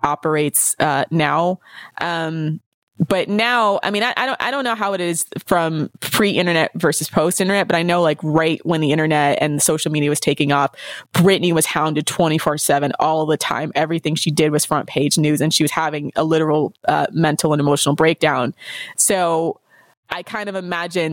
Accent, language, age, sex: American, English, 20-39, female